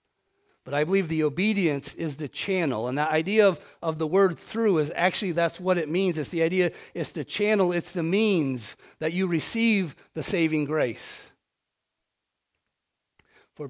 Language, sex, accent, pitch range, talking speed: English, male, American, 135-175 Hz, 165 wpm